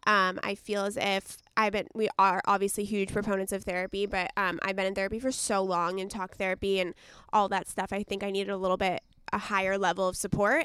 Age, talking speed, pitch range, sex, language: 20-39, 235 wpm, 195-220 Hz, female, English